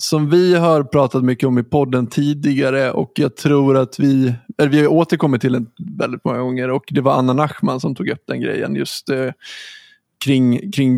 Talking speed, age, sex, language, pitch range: 200 wpm, 20-39, male, Swedish, 125-155 Hz